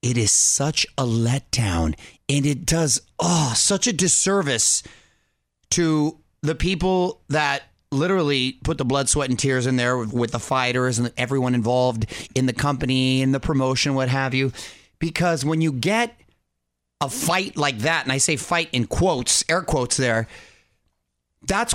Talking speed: 160 wpm